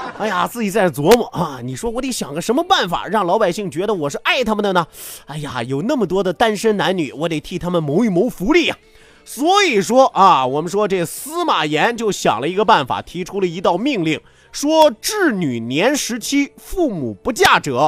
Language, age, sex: Chinese, 30-49, male